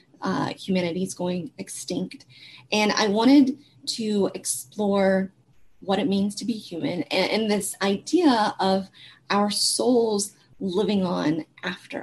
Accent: American